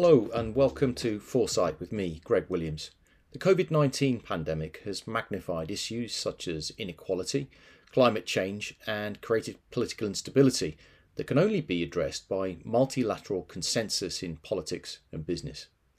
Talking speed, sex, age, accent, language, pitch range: 135 wpm, male, 40-59, British, English, 95-135 Hz